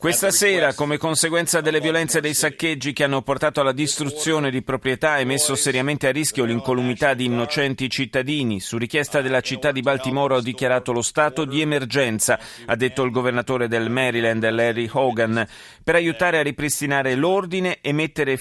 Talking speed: 170 wpm